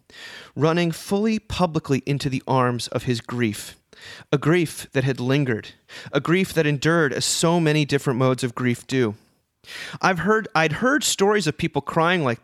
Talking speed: 170 wpm